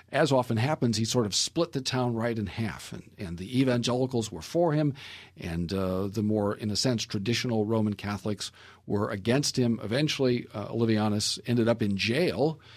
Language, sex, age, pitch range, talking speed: English, male, 50-69, 100-125 Hz, 185 wpm